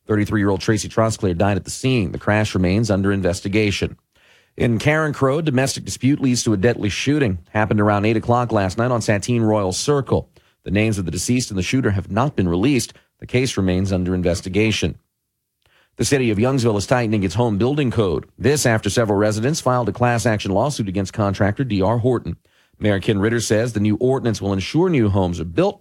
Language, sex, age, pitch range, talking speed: English, male, 40-59, 100-125 Hz, 200 wpm